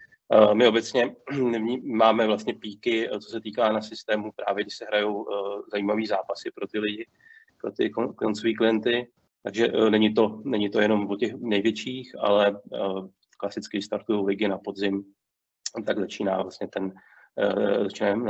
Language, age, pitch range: Czech, 30-49, 100-110 Hz